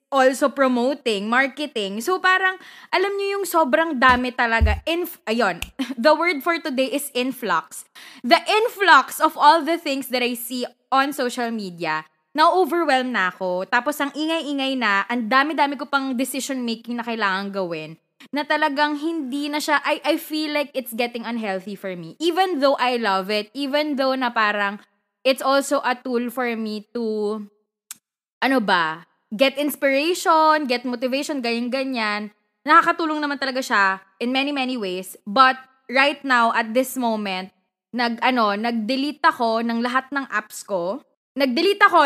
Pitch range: 225-295 Hz